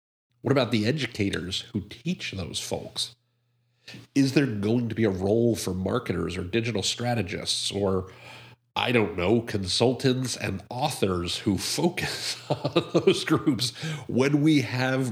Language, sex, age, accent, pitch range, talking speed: English, male, 50-69, American, 100-130 Hz, 140 wpm